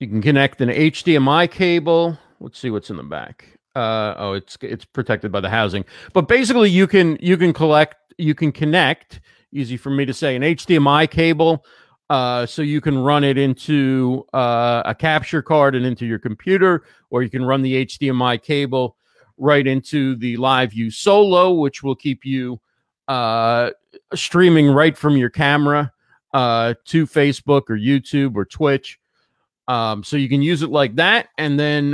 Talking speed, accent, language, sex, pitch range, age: 175 wpm, American, English, male, 120-155 Hz, 40-59